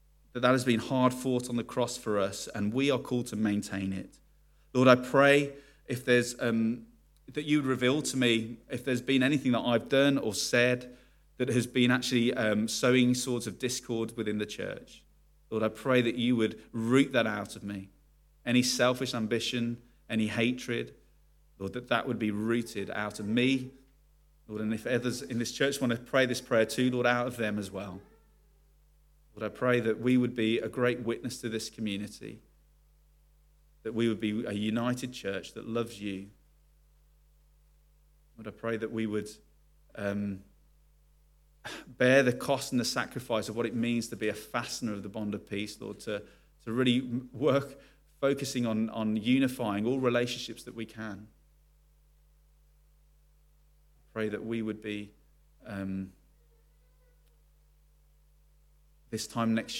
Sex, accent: male, British